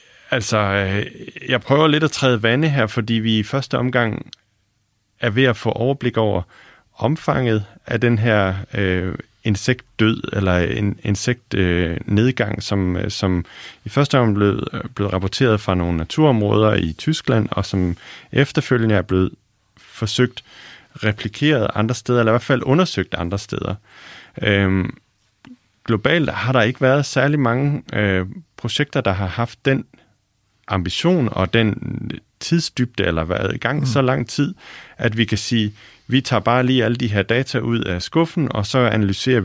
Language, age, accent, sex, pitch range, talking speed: Danish, 30-49, native, male, 100-125 Hz, 155 wpm